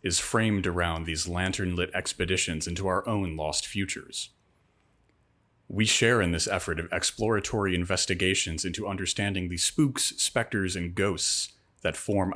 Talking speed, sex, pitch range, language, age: 140 wpm, male, 90-110 Hz, English, 30-49